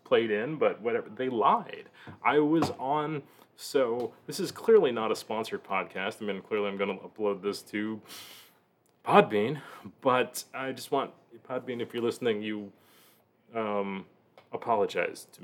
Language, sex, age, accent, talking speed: English, male, 30-49, American, 150 wpm